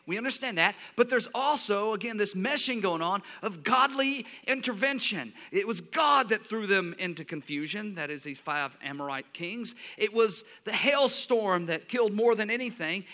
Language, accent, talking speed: English, American, 170 wpm